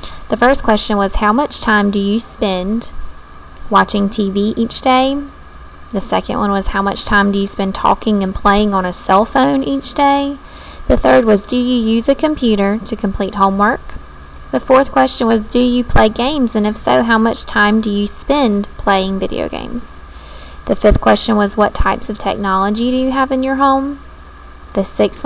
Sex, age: female, 20-39